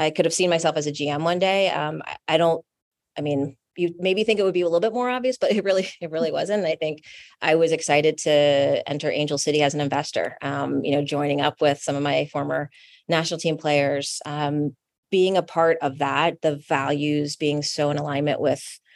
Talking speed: 225 wpm